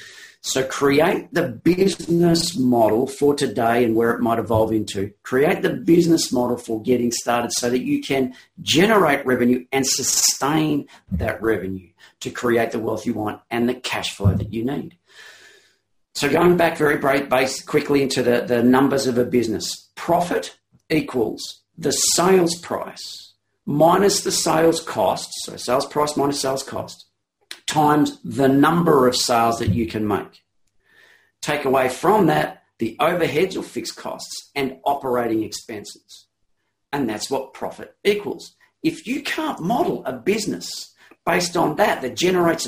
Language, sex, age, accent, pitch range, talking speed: English, male, 40-59, Australian, 120-165 Hz, 150 wpm